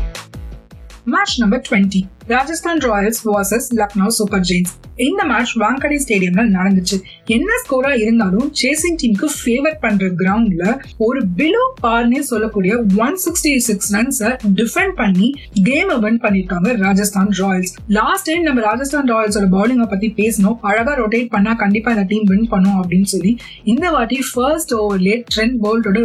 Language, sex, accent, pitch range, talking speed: Tamil, female, native, 195-240 Hz, 55 wpm